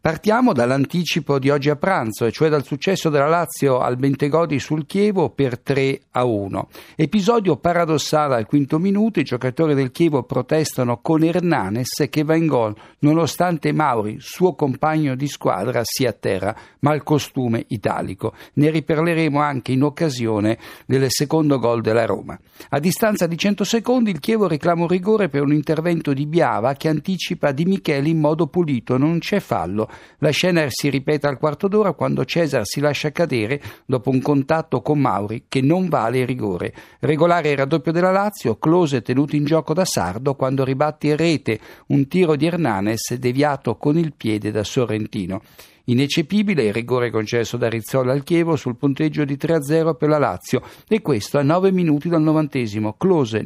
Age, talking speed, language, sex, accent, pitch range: 60-79, 170 wpm, Italian, male, native, 125-165 Hz